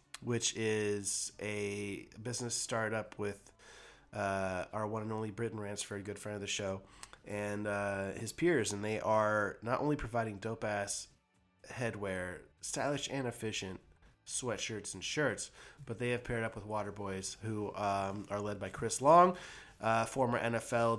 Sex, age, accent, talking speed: male, 20-39, American, 155 wpm